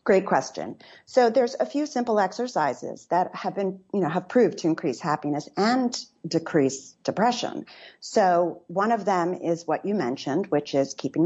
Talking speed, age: 170 wpm, 40-59